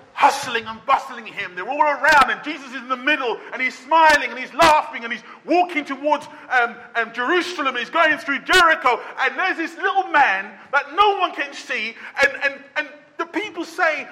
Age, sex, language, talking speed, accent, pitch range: 40-59, male, English, 195 wpm, British, 270-350 Hz